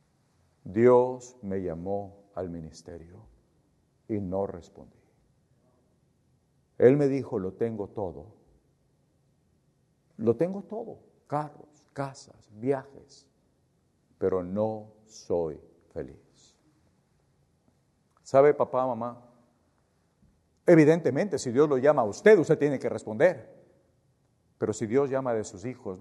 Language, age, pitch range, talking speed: English, 50-69, 95-150 Hz, 105 wpm